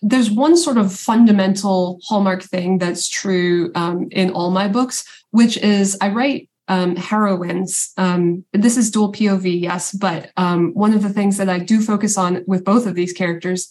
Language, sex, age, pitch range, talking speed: English, female, 20-39, 180-205 Hz, 185 wpm